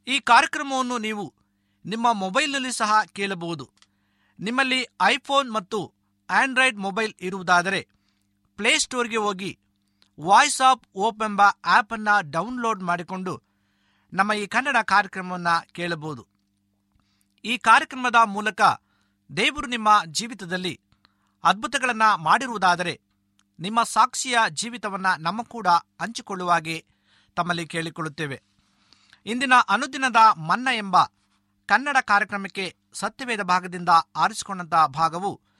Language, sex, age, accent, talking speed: Kannada, male, 50-69, native, 90 wpm